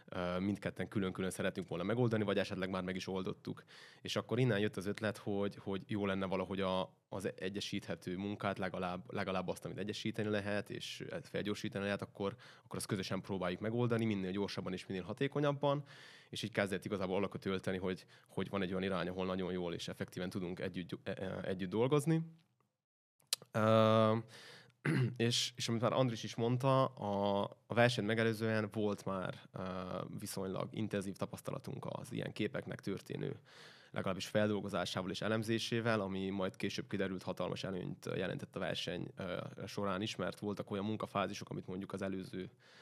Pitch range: 95-110 Hz